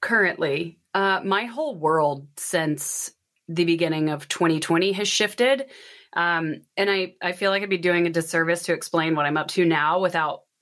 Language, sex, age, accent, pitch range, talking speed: English, female, 30-49, American, 160-195 Hz, 175 wpm